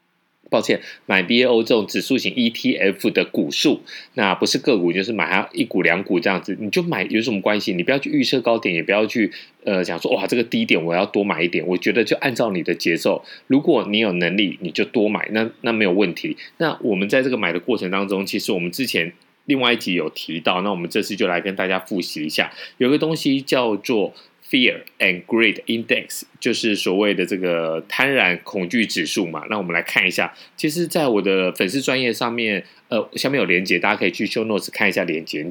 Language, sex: Chinese, male